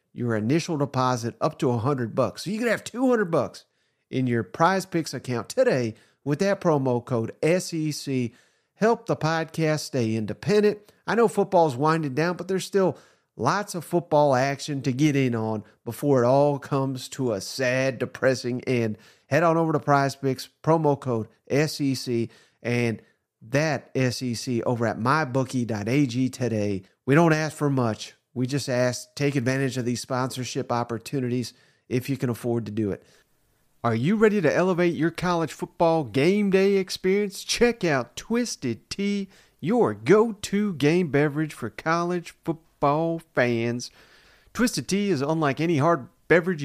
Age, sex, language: 40-59, male, English